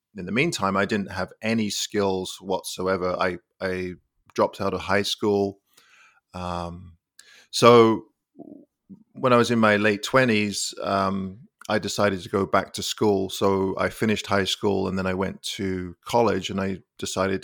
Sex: male